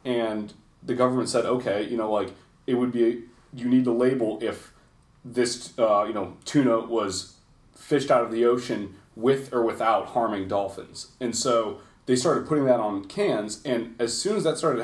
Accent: American